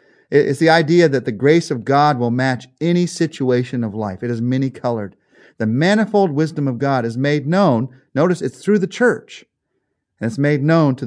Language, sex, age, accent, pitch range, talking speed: English, male, 40-59, American, 120-170 Hz, 190 wpm